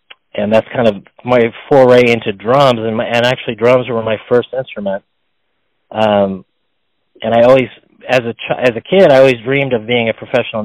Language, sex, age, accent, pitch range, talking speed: English, male, 30-49, American, 105-120 Hz, 190 wpm